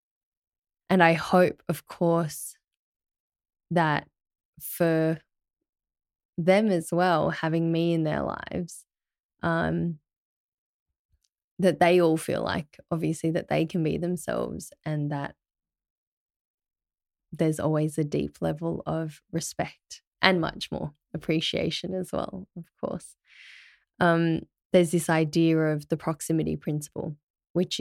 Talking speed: 115 wpm